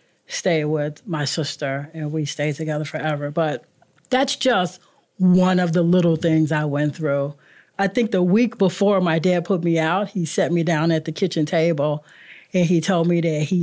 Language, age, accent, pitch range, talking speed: English, 40-59, American, 160-200 Hz, 195 wpm